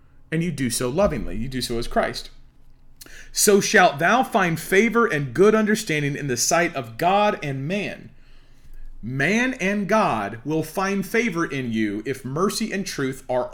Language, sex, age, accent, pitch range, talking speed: English, male, 40-59, American, 120-180 Hz, 170 wpm